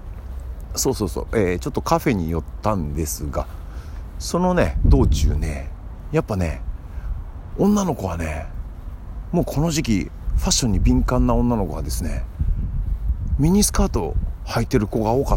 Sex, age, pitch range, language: male, 50-69, 80-110 Hz, Japanese